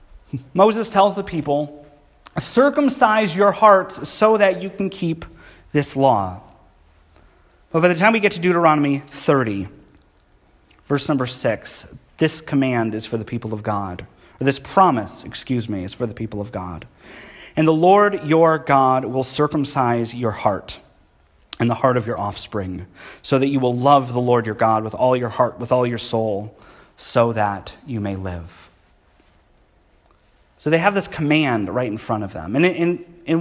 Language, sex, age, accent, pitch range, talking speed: English, male, 30-49, American, 115-175 Hz, 170 wpm